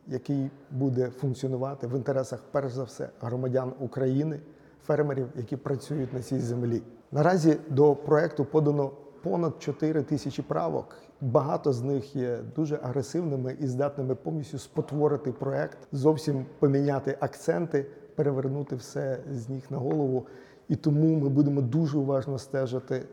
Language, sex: Ukrainian, male